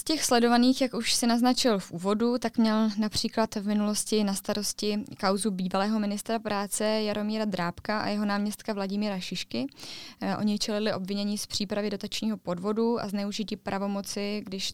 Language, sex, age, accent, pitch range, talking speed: Czech, female, 20-39, native, 195-215 Hz, 155 wpm